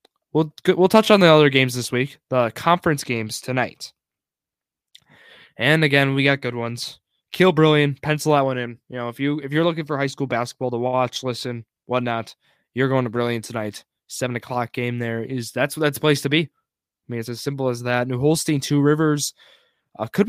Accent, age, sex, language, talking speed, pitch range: American, 20-39, male, English, 205 wpm, 125-155 Hz